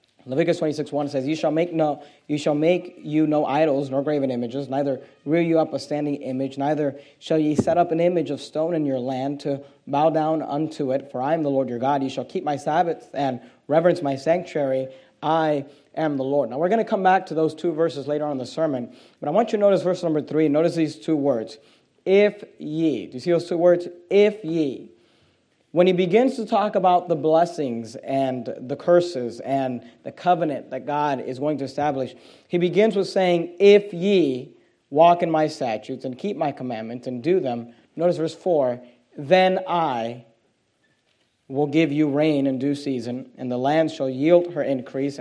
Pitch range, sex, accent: 135-170 Hz, male, American